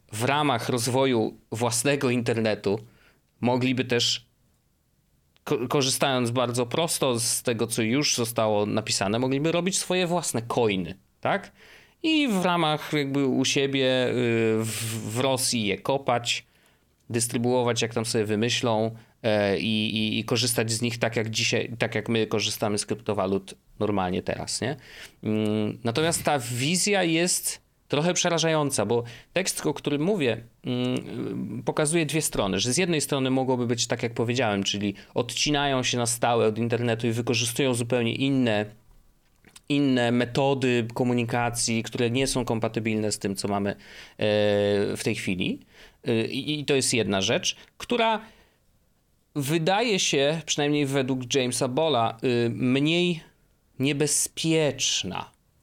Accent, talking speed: native, 125 wpm